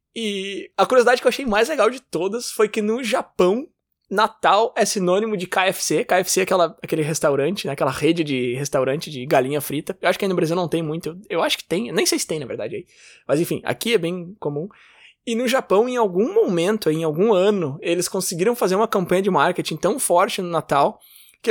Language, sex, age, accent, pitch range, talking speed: Portuguese, male, 20-39, Brazilian, 160-215 Hz, 220 wpm